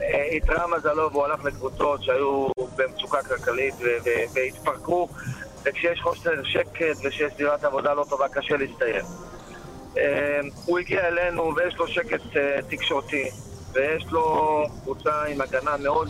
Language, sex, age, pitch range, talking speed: Hebrew, male, 40-59, 135-185 Hz, 120 wpm